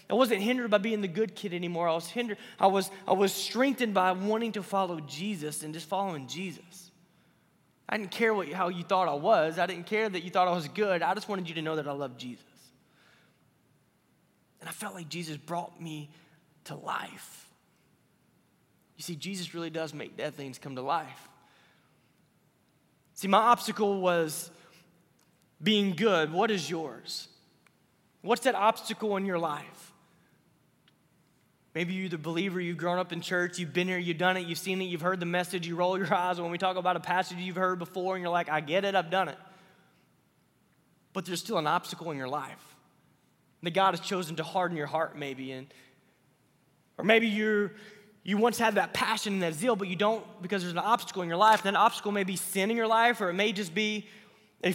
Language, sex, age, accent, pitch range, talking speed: English, male, 20-39, American, 165-205 Hz, 205 wpm